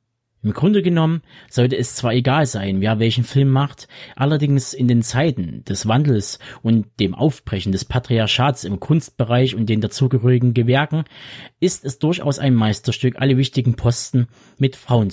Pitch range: 115-135 Hz